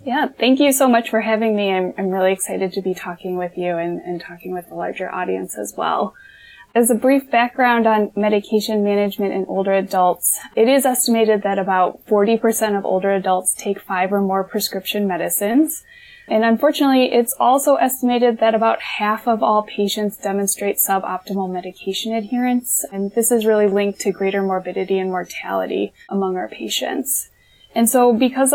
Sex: female